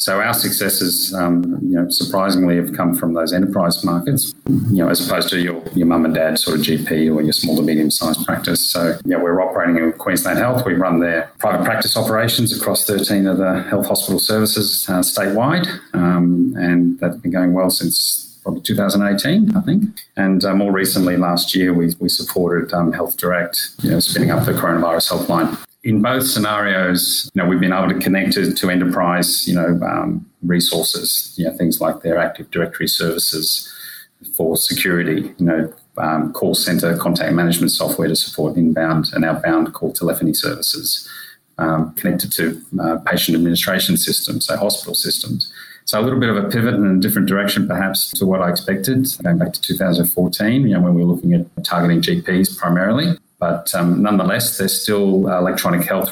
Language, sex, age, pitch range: English, male, 30-49, 85-95 Hz